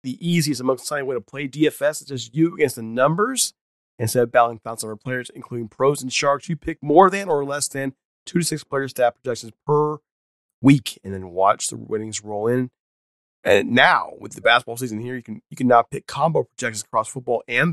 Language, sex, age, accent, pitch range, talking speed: English, male, 30-49, American, 115-150 Hz, 220 wpm